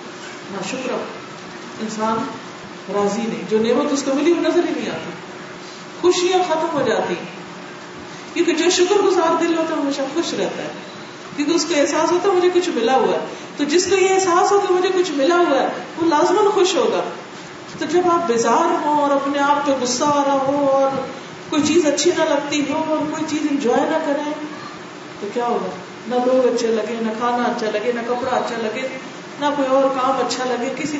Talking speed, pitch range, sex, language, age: 115 wpm, 210-305 Hz, female, Urdu, 40-59